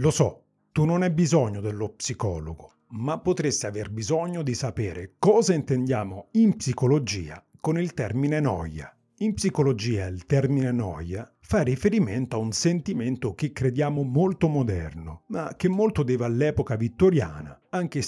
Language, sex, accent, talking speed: Italian, male, native, 145 wpm